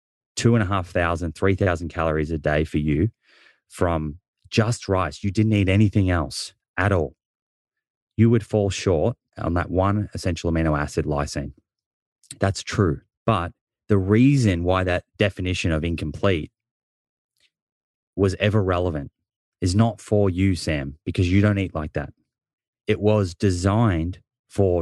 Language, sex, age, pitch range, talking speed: English, male, 30-49, 85-110 Hz, 150 wpm